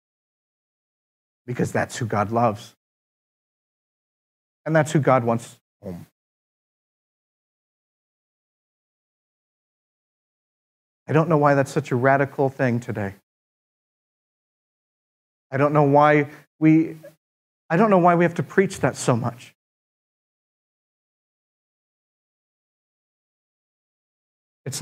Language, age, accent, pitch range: English, 50-69, American, 115-160 Hz